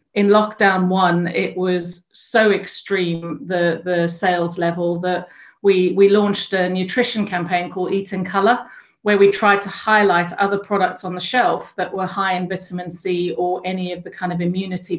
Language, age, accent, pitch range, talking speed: English, 40-59, British, 180-200 Hz, 180 wpm